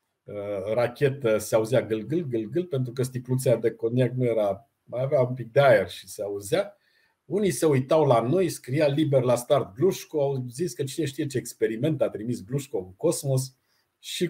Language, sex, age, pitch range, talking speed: Romanian, male, 50-69, 110-150 Hz, 190 wpm